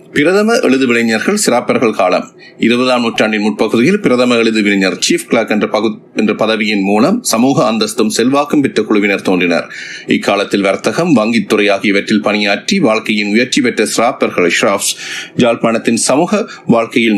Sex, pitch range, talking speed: male, 105-115 Hz, 105 wpm